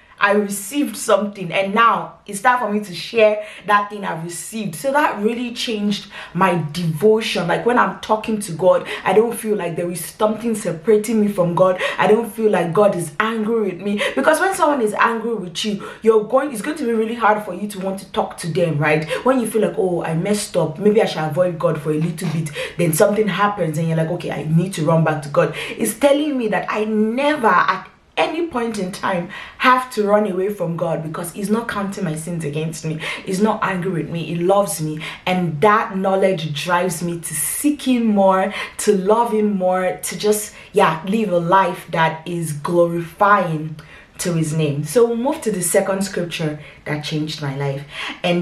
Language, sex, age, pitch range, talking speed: English, female, 20-39, 165-215 Hz, 215 wpm